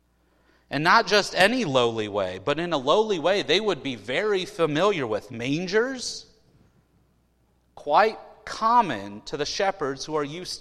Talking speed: 145 wpm